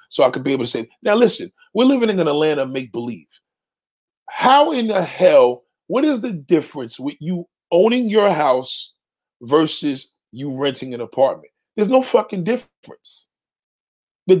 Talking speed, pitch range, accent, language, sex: 165 wpm, 150-220 Hz, American, English, male